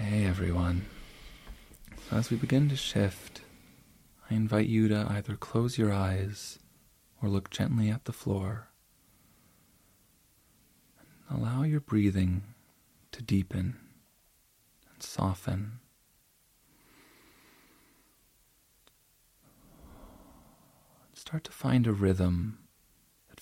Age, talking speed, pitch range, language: 30-49, 90 wpm, 100-120 Hz, English